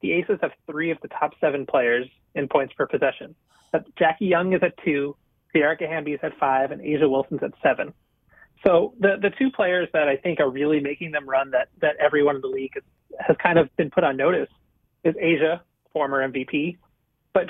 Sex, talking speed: male, 205 wpm